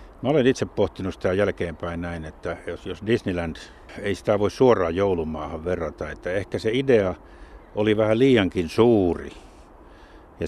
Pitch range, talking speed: 85-110 Hz, 150 wpm